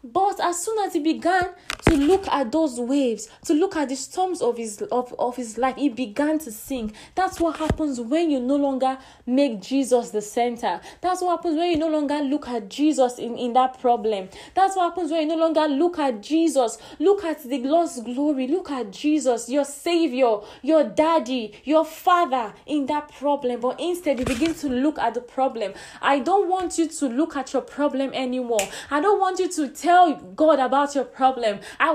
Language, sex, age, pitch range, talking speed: English, female, 10-29, 250-330 Hz, 200 wpm